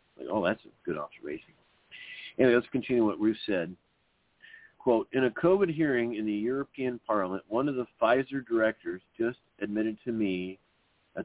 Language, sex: English, male